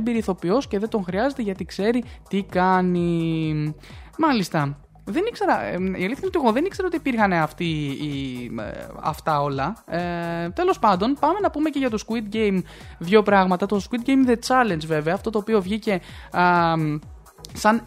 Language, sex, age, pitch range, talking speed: Greek, male, 20-39, 180-250 Hz, 155 wpm